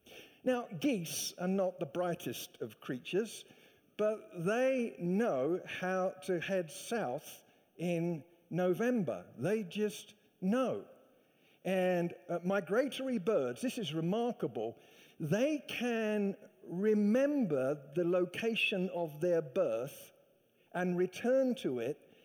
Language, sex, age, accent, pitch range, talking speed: English, male, 50-69, British, 180-240 Hz, 105 wpm